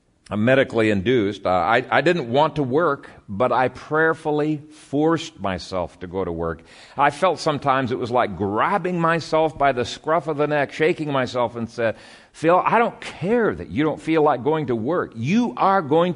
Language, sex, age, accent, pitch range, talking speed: English, male, 50-69, American, 115-160 Hz, 185 wpm